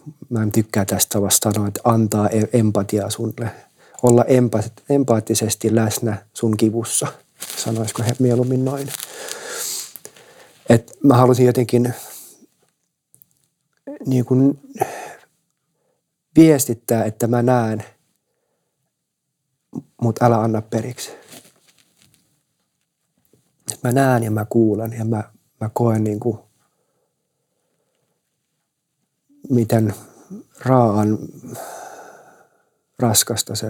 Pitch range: 110-140 Hz